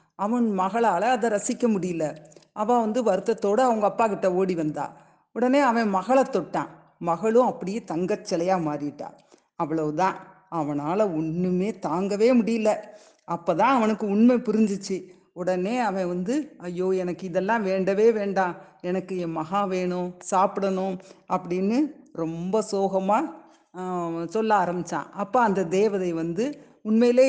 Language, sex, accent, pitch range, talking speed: Tamil, female, native, 175-230 Hz, 115 wpm